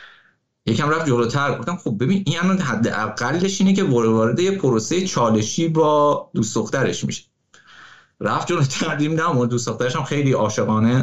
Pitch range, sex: 140-210 Hz, male